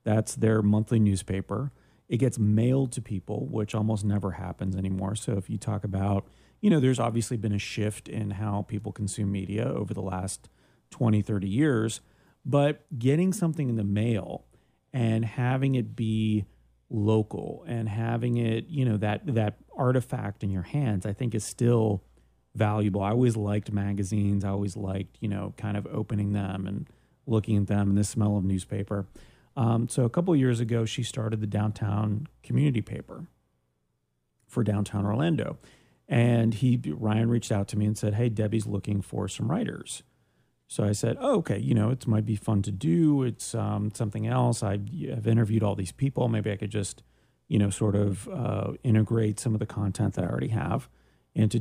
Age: 30-49